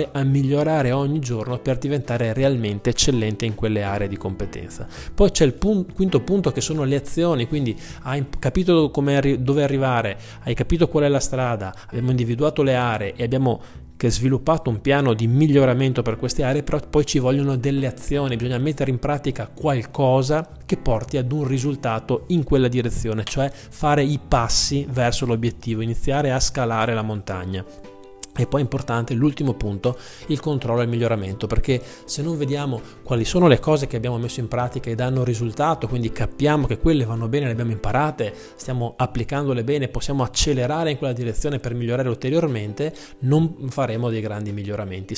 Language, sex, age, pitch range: Italian, male, 20-39, 115-145 Hz